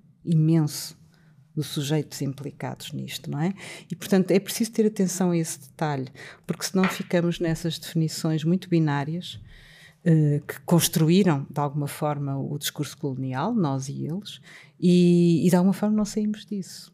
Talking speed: 150 wpm